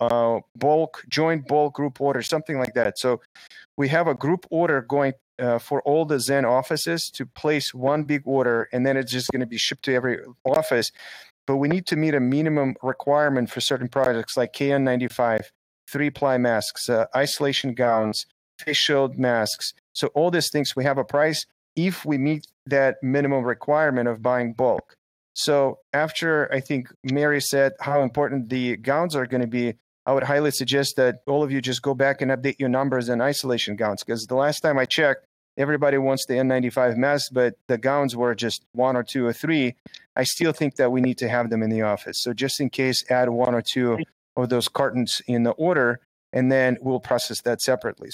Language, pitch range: English, 125-145 Hz